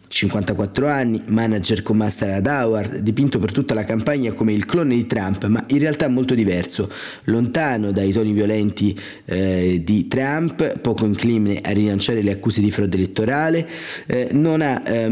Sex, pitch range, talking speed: male, 105-125 Hz, 165 wpm